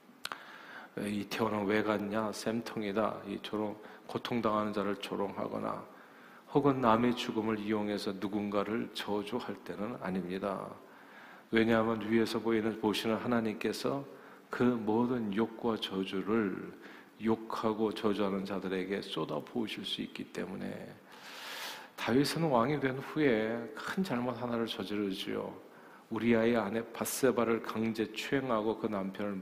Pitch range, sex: 105-130 Hz, male